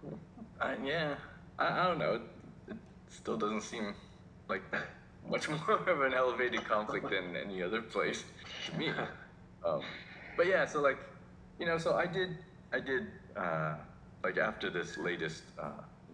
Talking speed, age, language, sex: 160 wpm, 20-39, English, male